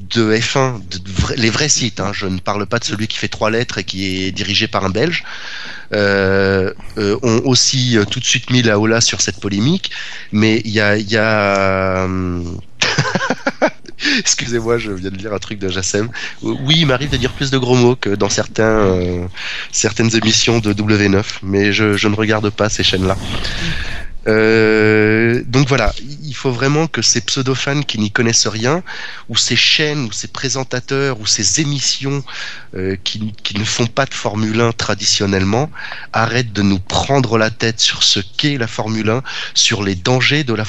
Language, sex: French, male